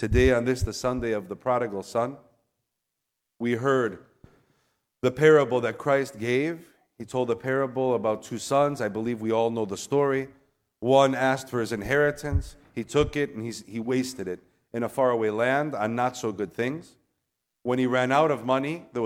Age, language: 40-59, English